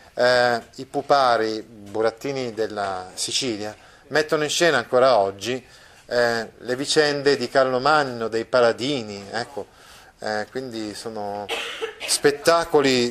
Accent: native